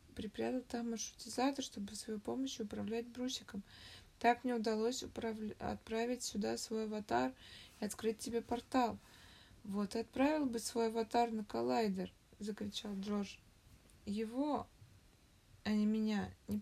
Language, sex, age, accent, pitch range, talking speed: Russian, female, 20-39, native, 205-245 Hz, 125 wpm